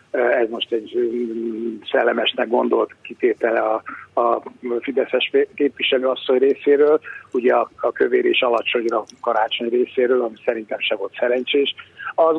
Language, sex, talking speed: Hungarian, male, 125 wpm